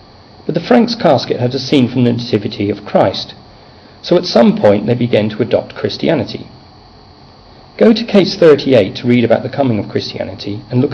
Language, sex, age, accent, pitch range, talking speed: English, male, 40-59, British, 105-130 Hz, 185 wpm